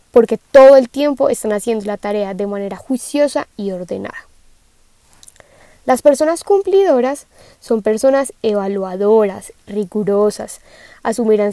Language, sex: Spanish, female